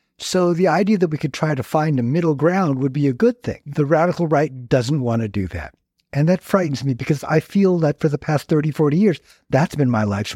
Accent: American